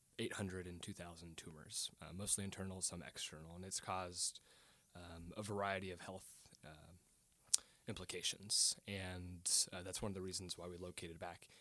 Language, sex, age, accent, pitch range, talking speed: English, male, 20-39, American, 85-100 Hz, 155 wpm